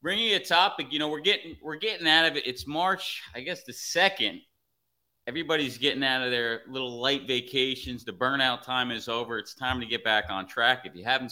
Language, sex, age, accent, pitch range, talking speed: English, male, 30-49, American, 110-140 Hz, 225 wpm